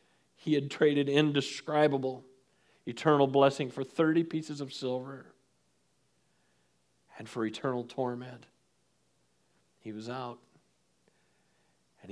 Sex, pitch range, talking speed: male, 125-165 Hz, 95 wpm